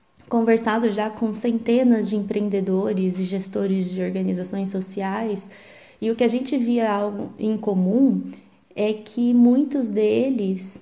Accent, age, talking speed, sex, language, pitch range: Brazilian, 20-39, 135 wpm, female, Portuguese, 200-235 Hz